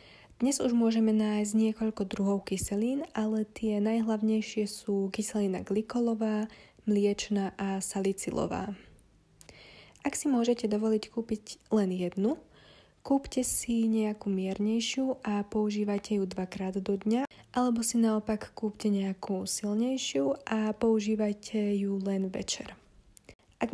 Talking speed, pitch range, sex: 115 wpm, 205-225 Hz, female